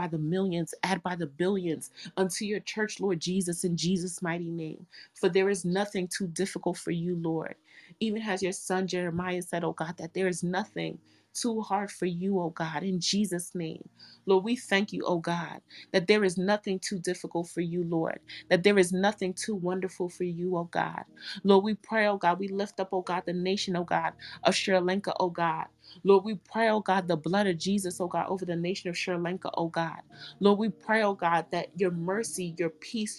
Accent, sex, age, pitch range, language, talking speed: American, female, 30-49, 175-195 Hz, English, 215 wpm